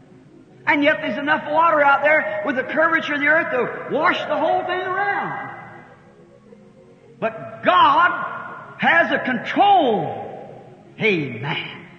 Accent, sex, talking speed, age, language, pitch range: American, male, 125 wpm, 50-69, English, 195-275 Hz